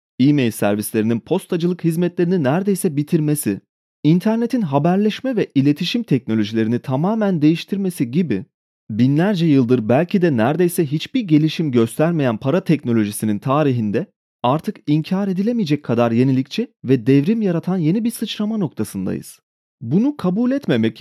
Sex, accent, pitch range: male, native, 125-195 Hz